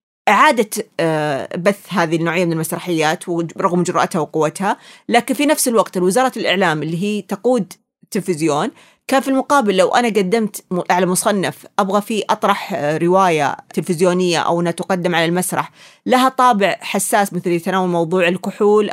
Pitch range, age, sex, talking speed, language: 175-240 Hz, 30-49, female, 135 wpm, Arabic